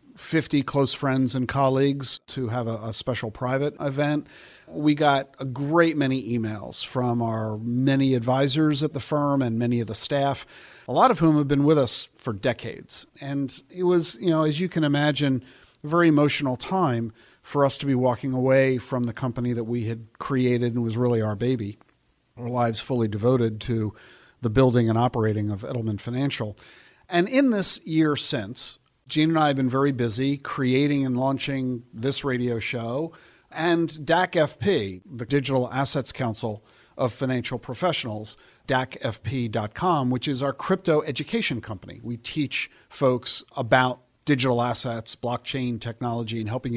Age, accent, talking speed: 50-69, American, 165 wpm